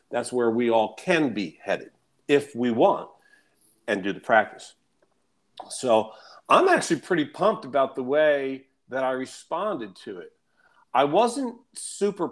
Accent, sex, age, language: American, male, 40-59, English